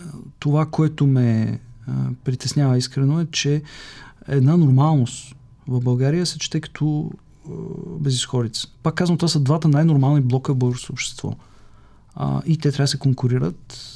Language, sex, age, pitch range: English, male, 40-59, 125-160 Hz